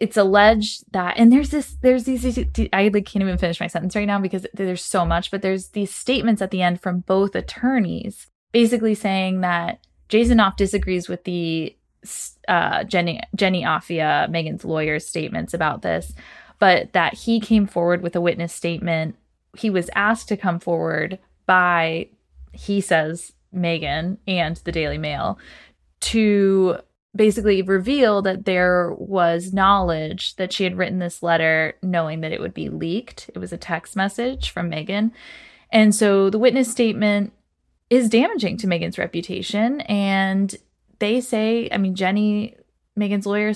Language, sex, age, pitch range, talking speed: English, female, 20-39, 175-215 Hz, 160 wpm